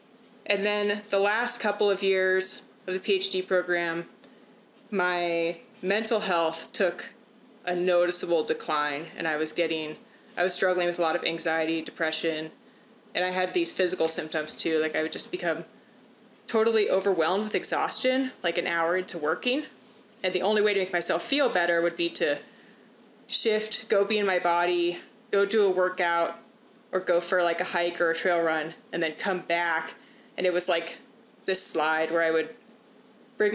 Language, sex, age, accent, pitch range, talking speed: English, female, 30-49, American, 170-225 Hz, 175 wpm